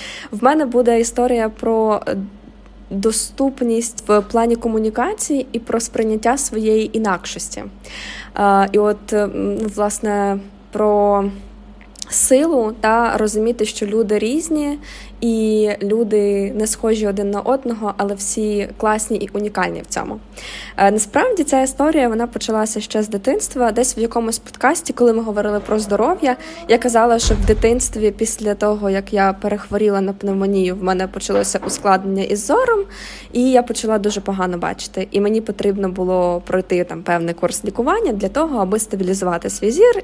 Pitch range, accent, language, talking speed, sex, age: 200-245 Hz, native, Ukrainian, 140 wpm, female, 20-39